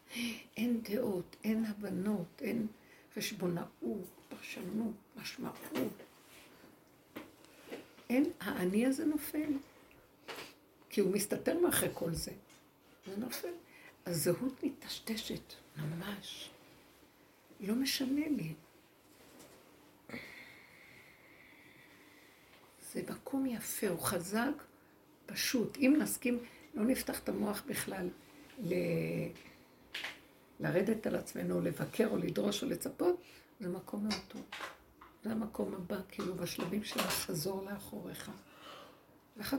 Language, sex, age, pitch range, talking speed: Hebrew, female, 60-79, 180-260 Hz, 90 wpm